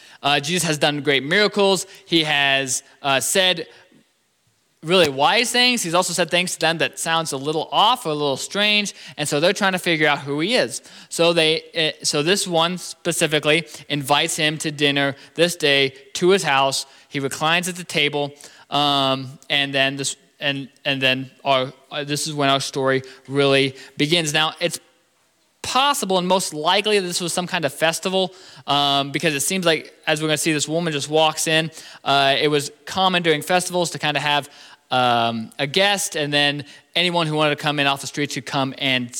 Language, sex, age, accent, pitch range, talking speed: English, male, 20-39, American, 135-165 Hz, 195 wpm